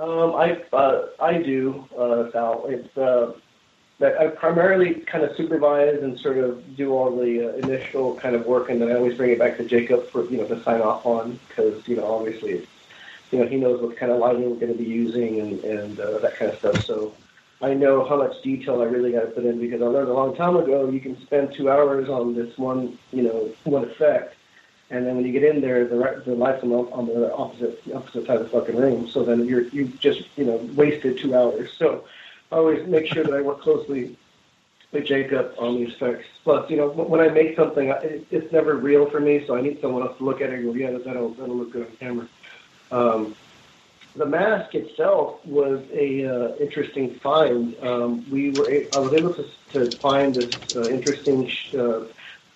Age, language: 40-59, English